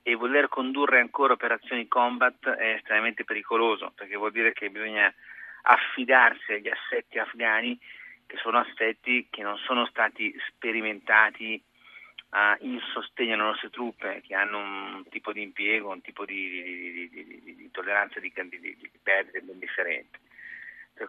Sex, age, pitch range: male, 40-59, 105-125 Hz